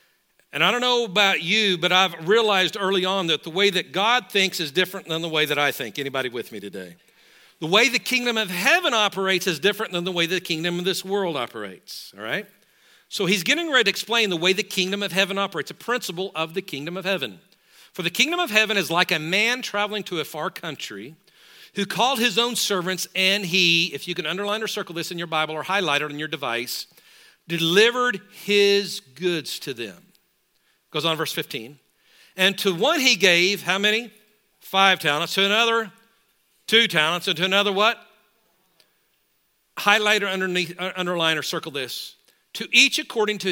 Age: 50-69